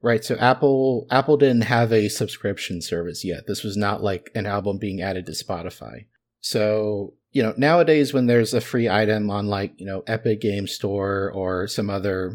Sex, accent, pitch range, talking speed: male, American, 100-120 Hz, 190 wpm